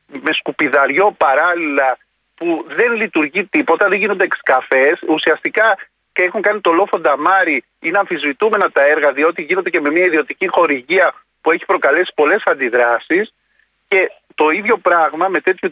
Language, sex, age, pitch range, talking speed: Greek, male, 40-59, 170-220 Hz, 150 wpm